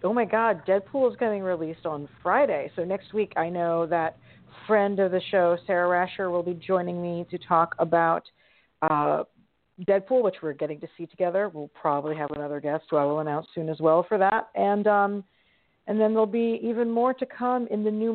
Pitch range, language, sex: 170-205 Hz, English, female